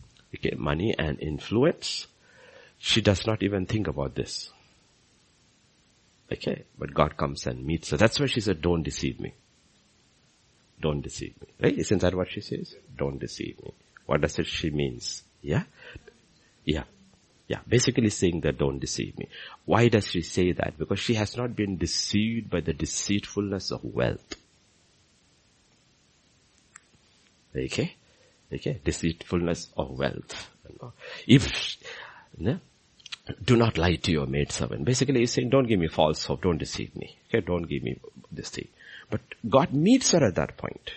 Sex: male